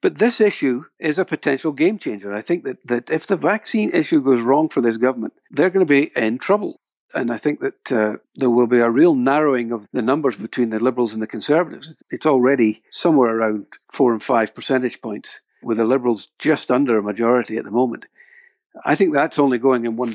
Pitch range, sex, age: 115-160 Hz, male, 60-79